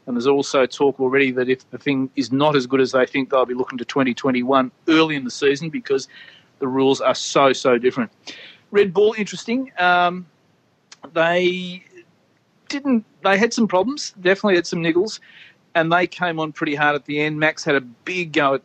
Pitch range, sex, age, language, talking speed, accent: 140-175 Hz, male, 40-59, English, 200 wpm, Australian